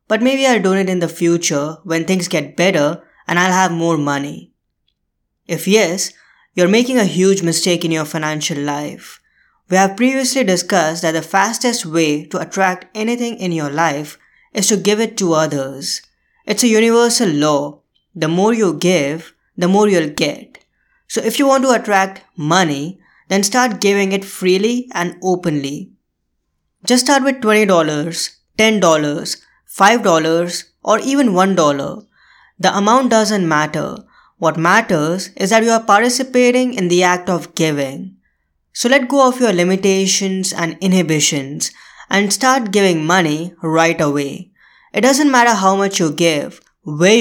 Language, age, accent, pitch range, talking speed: English, 20-39, Indian, 165-220 Hz, 155 wpm